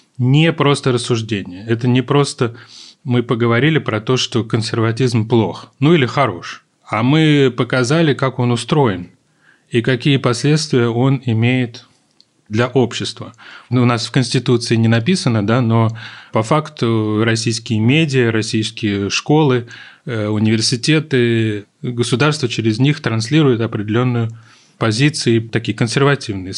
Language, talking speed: Russian, 120 wpm